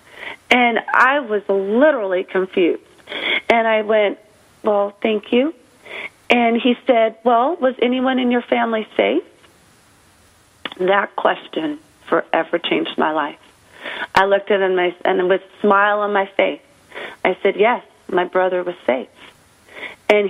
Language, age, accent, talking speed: English, 40-59, American, 135 wpm